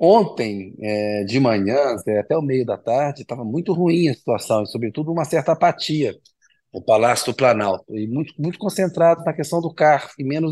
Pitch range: 120-160 Hz